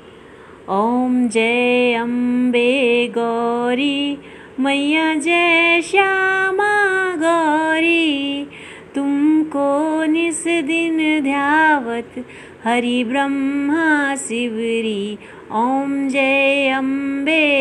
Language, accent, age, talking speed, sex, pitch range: Hindi, native, 30-49, 55 wpm, female, 235-305 Hz